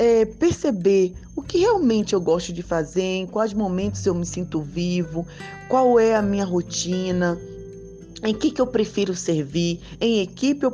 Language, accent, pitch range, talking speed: Portuguese, Brazilian, 165-235 Hz, 160 wpm